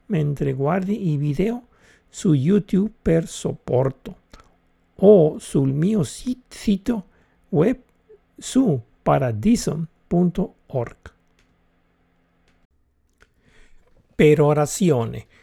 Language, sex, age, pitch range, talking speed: Italian, male, 60-79, 135-190 Hz, 60 wpm